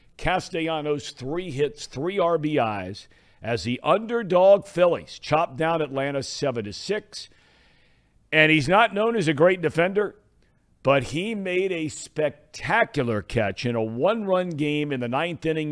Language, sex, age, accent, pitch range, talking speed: English, male, 50-69, American, 120-165 Hz, 135 wpm